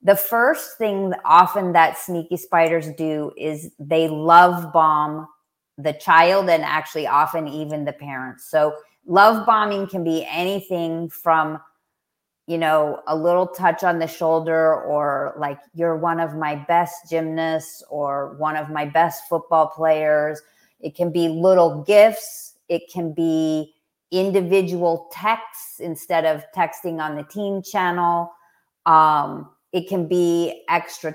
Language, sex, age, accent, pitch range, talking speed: English, female, 30-49, American, 155-180 Hz, 140 wpm